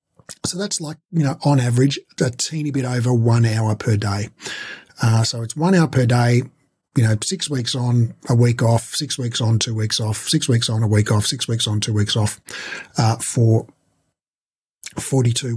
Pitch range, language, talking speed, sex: 115-150 Hz, English, 195 wpm, male